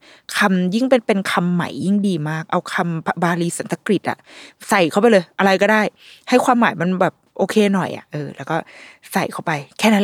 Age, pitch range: 20-39, 165-230 Hz